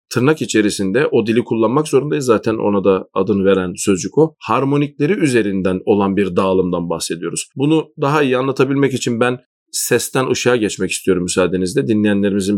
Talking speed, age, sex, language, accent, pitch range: 150 wpm, 40-59, male, Turkish, native, 95-150 Hz